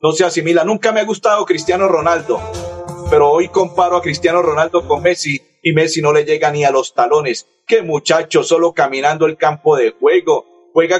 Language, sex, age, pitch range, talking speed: Spanish, male, 50-69, 160-230 Hz, 190 wpm